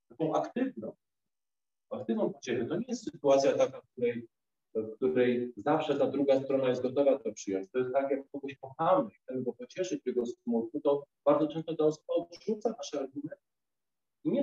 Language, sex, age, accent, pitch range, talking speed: Polish, male, 40-59, native, 140-175 Hz, 180 wpm